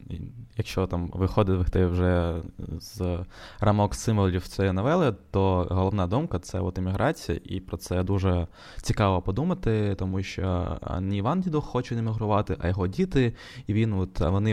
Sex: male